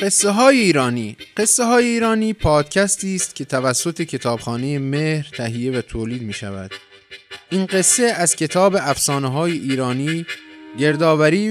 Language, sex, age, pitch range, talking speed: Persian, male, 30-49, 130-195 Hz, 130 wpm